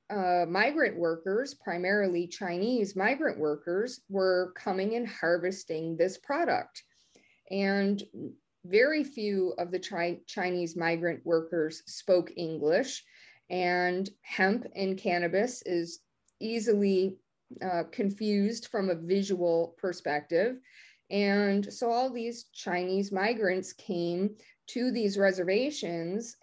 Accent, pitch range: American, 175-230 Hz